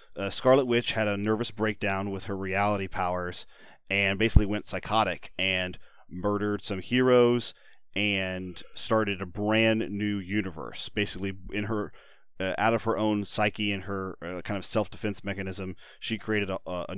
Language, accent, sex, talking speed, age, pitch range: English, American, male, 160 wpm, 30-49, 90-105 Hz